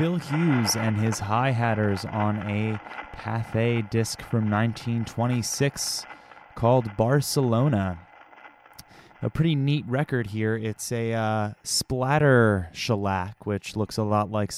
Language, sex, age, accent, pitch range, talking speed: English, male, 20-39, American, 100-120 Hz, 115 wpm